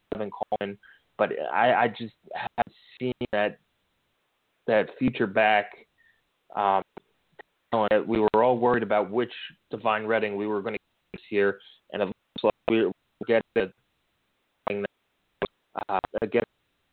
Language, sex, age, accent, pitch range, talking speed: English, male, 20-39, American, 105-125 Hz, 115 wpm